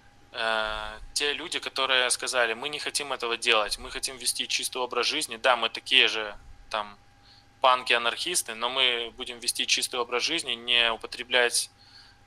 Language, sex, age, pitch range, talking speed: Russian, male, 20-39, 110-125 Hz, 145 wpm